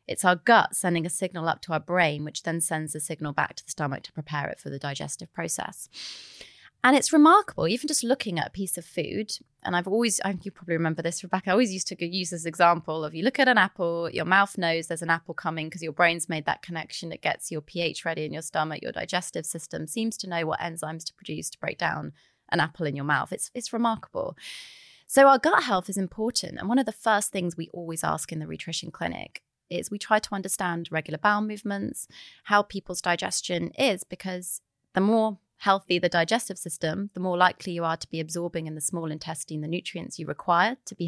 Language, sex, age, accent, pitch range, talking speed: English, female, 20-39, British, 165-210 Hz, 230 wpm